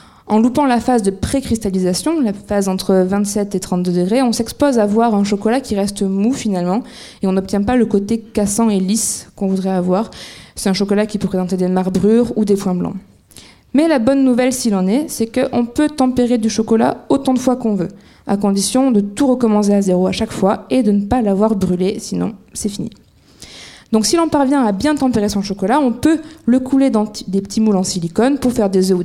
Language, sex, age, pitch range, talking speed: French, female, 20-39, 200-255 Hz, 225 wpm